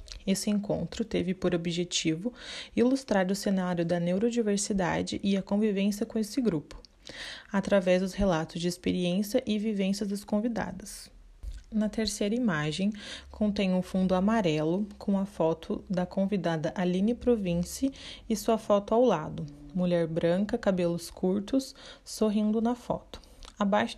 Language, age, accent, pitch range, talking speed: Portuguese, 20-39, Brazilian, 180-220 Hz, 130 wpm